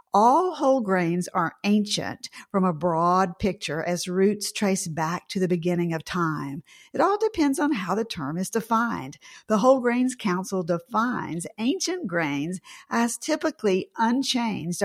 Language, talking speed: English, 150 wpm